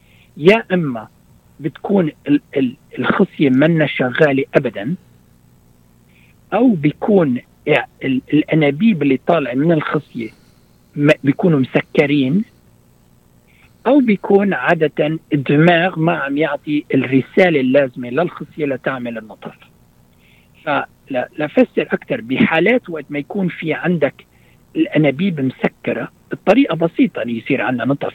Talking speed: 95 wpm